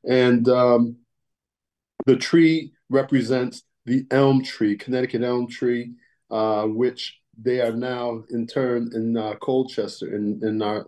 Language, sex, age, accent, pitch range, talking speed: English, male, 40-59, American, 115-135 Hz, 130 wpm